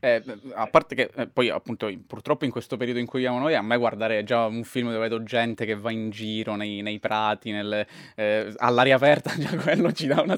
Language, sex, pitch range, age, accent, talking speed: Italian, male, 110-130 Hz, 20-39, native, 230 wpm